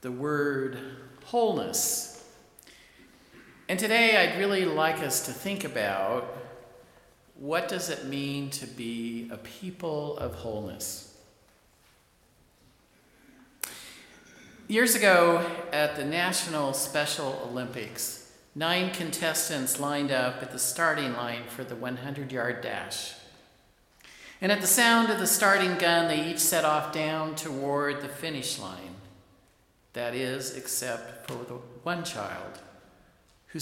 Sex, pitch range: male, 125-175 Hz